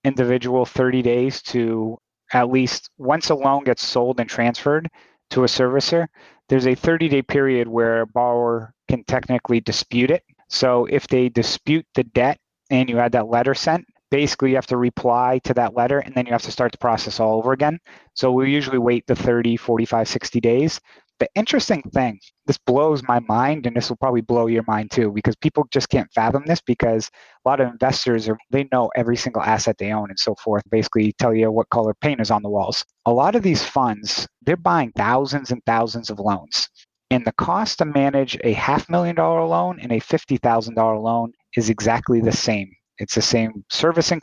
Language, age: English, 30-49